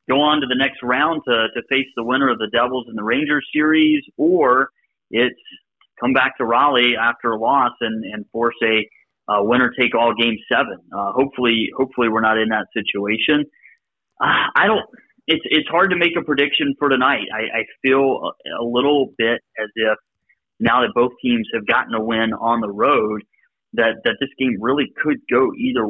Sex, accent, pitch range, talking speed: male, American, 110-130 Hz, 195 wpm